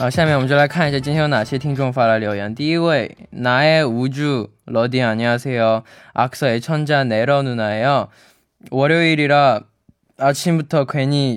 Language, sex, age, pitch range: Chinese, male, 20-39, 115-150 Hz